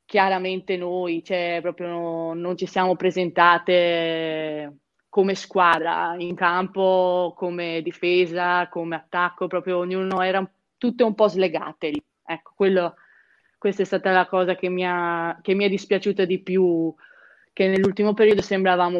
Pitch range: 170-190 Hz